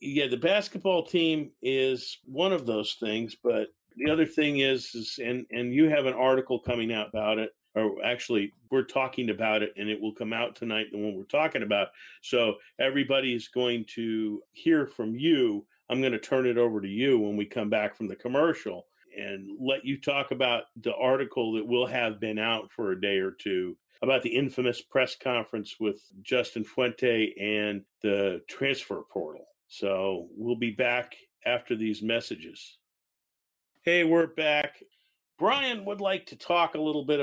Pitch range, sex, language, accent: 115-160 Hz, male, English, American